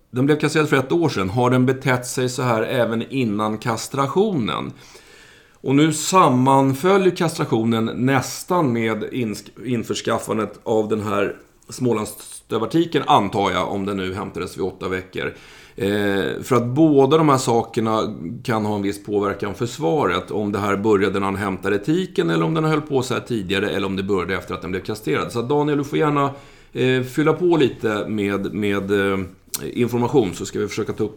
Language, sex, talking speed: Swedish, male, 180 wpm